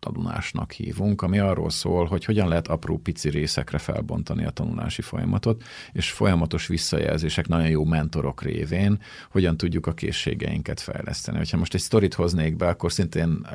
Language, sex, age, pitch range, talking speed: Hungarian, male, 40-59, 80-95 Hz, 155 wpm